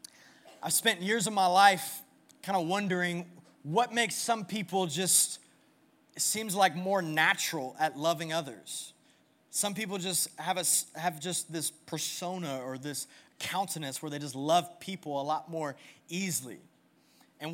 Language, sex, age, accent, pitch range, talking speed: English, male, 20-39, American, 160-215 Hz, 150 wpm